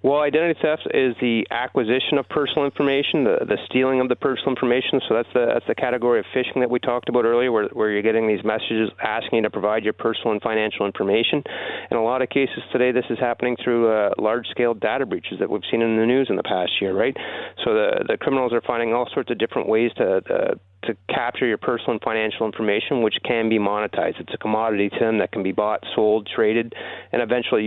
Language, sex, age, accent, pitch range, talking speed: English, male, 30-49, American, 110-125 Hz, 230 wpm